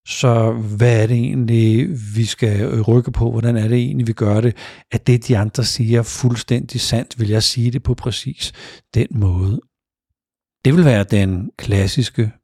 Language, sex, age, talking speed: Danish, male, 60-79, 175 wpm